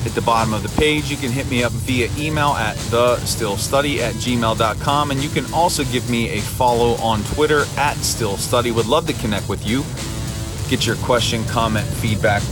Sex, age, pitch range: male, 30-49, 115-135 Hz